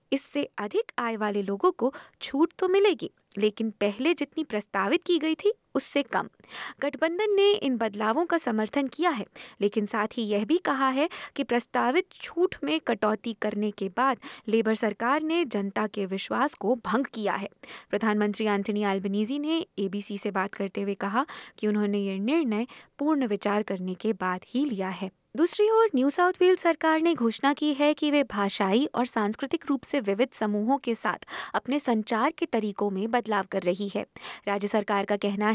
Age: 20-39